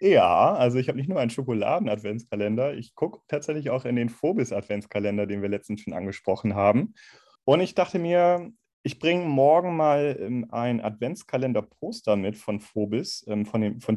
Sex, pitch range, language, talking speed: male, 115-140 Hz, German, 160 wpm